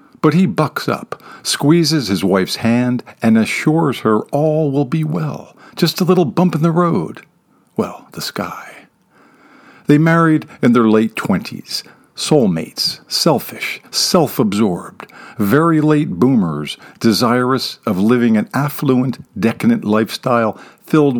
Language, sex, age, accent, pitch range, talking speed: English, male, 50-69, American, 115-155 Hz, 130 wpm